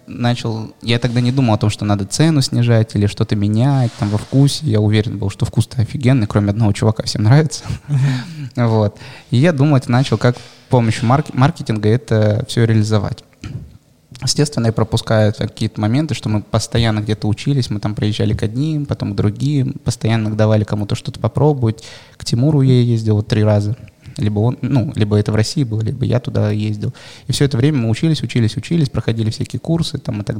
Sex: male